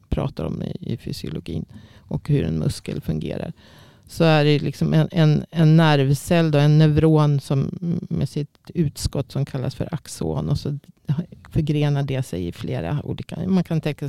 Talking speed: 170 wpm